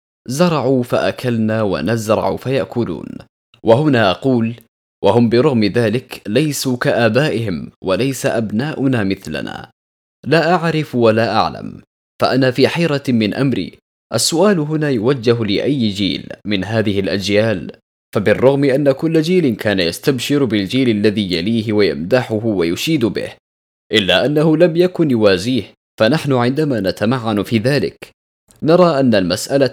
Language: Arabic